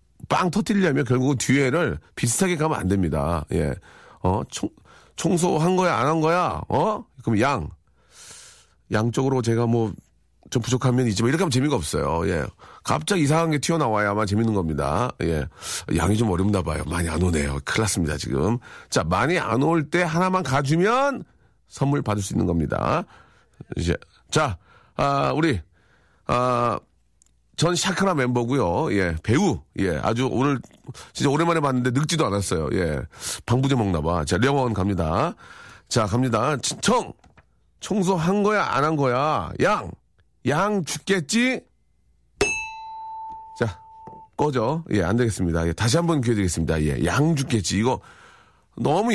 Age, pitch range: 40-59, 100-165 Hz